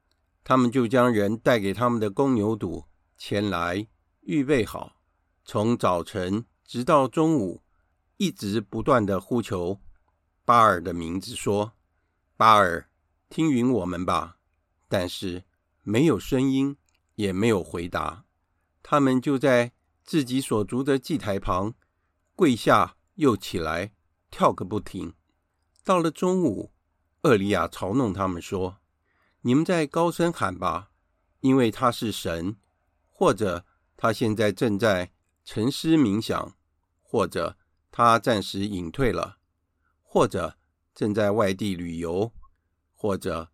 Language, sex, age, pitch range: Chinese, male, 50-69, 85-120 Hz